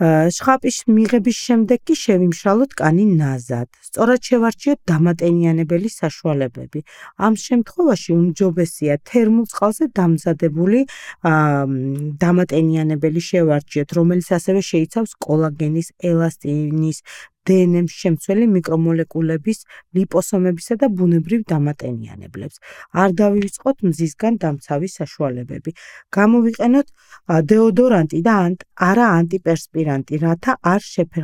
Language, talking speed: English, 90 wpm